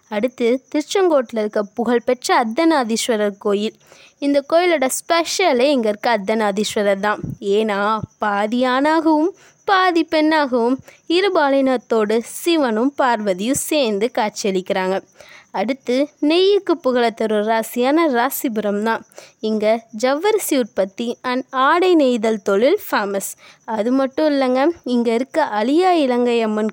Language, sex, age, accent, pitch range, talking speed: Tamil, female, 20-39, native, 220-300 Hz, 100 wpm